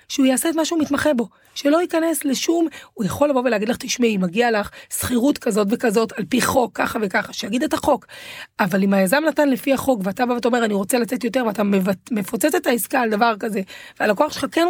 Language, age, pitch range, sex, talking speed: Hebrew, 30-49, 205-260 Hz, female, 220 wpm